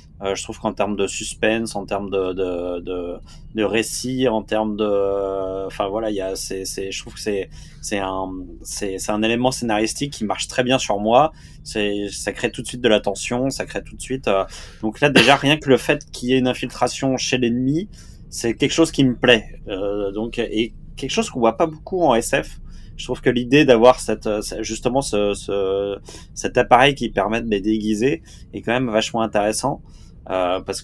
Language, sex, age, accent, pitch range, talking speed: French, male, 20-39, French, 100-130 Hz, 215 wpm